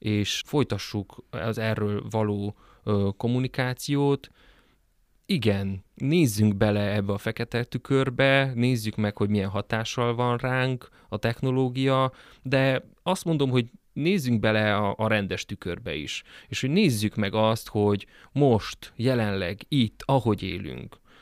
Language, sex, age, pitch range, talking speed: Hungarian, male, 30-49, 105-120 Hz, 125 wpm